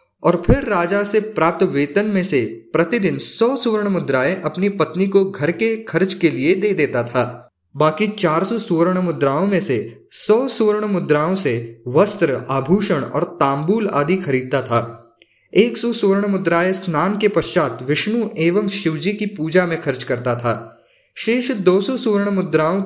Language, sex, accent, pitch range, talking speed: Hindi, male, native, 145-200 Hz, 160 wpm